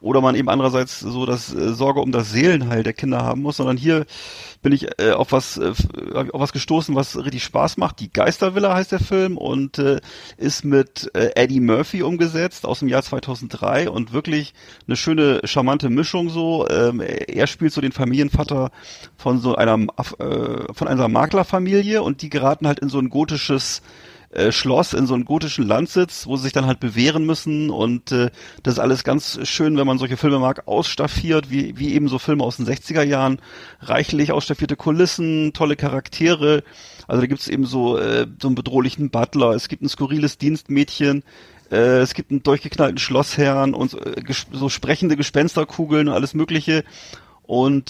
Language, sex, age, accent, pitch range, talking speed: German, male, 40-59, German, 130-155 Hz, 175 wpm